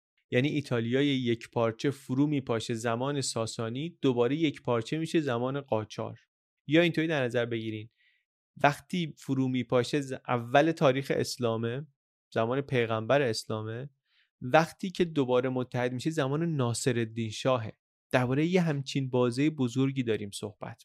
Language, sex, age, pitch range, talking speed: Persian, male, 30-49, 115-145 Hz, 135 wpm